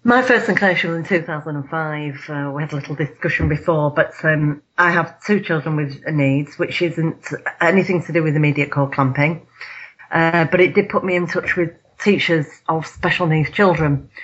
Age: 40-59